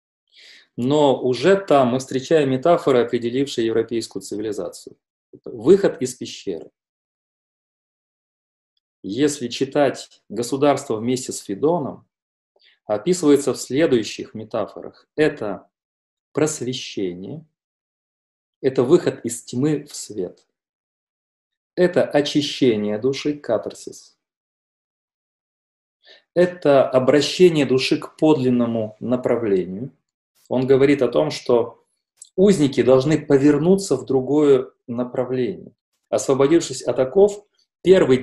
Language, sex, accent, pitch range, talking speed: Russian, male, native, 120-155 Hz, 85 wpm